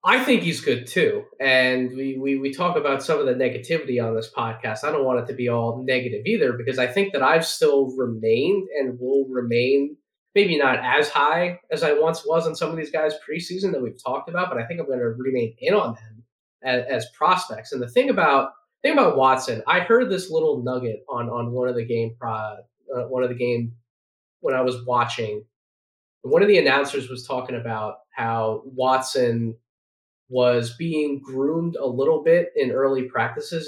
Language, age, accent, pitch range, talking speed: English, 20-39, American, 120-155 Hz, 205 wpm